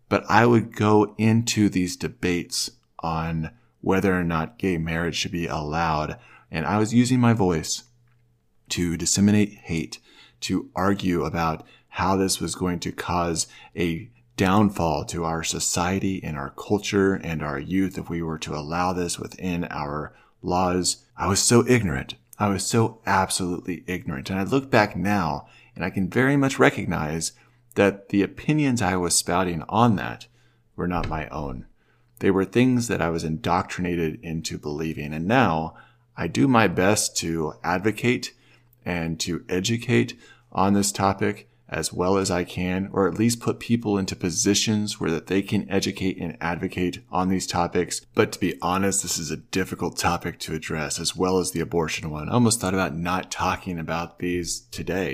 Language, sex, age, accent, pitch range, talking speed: English, male, 40-59, American, 85-105 Hz, 170 wpm